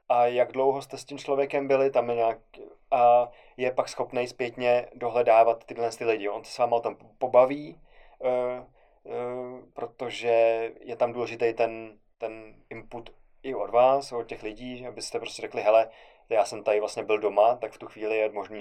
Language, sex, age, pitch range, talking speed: Czech, male, 20-39, 115-125 Hz, 175 wpm